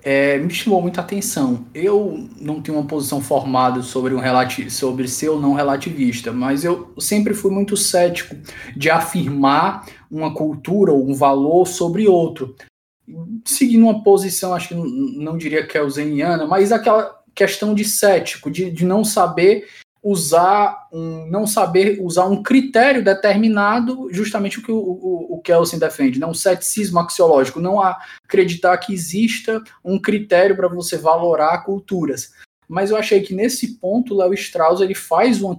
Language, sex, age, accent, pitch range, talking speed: Portuguese, male, 20-39, Brazilian, 155-215 Hz, 160 wpm